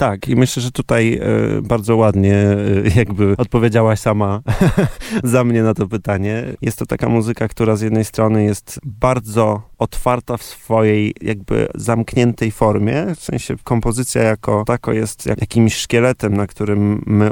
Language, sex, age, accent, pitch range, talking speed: Polish, male, 30-49, native, 105-115 Hz, 145 wpm